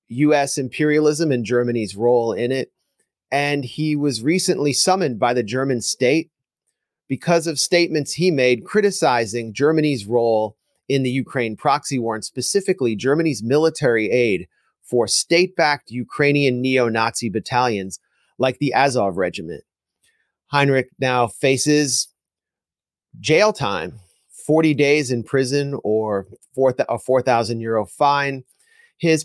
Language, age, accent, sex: English, 30-49, American, male